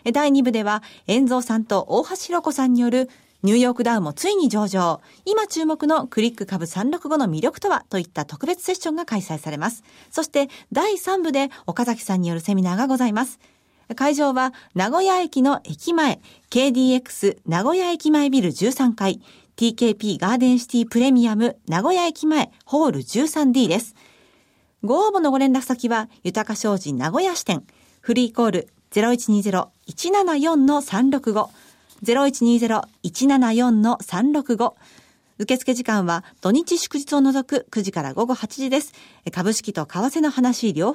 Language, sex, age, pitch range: Japanese, female, 40-59, 215-290 Hz